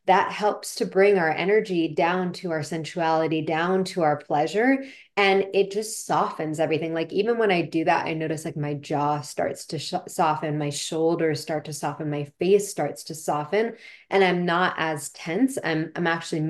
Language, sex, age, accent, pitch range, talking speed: English, female, 20-39, American, 155-190 Hz, 190 wpm